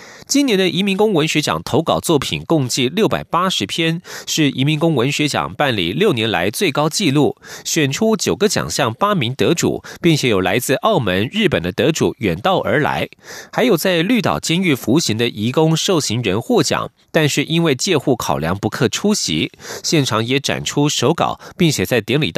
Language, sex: German, male